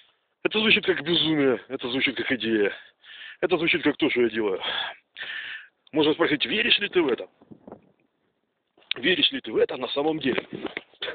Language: Russian